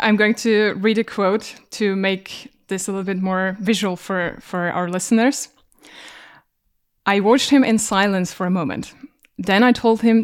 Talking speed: 175 wpm